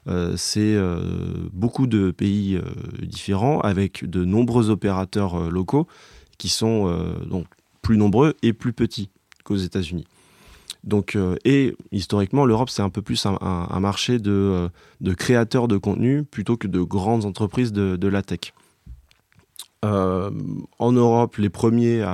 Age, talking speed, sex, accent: 20-39, 155 wpm, male, French